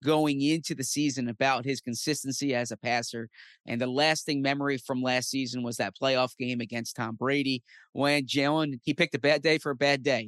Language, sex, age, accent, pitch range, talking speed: English, male, 30-49, American, 125-145 Hz, 210 wpm